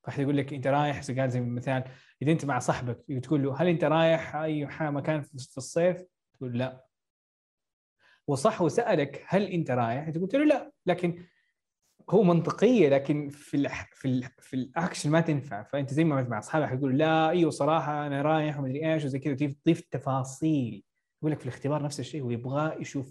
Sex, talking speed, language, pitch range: male, 170 wpm, Arabic, 130-160 Hz